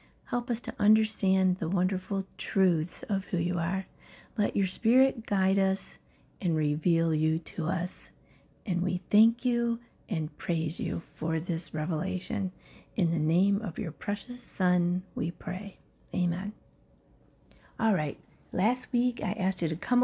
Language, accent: English, American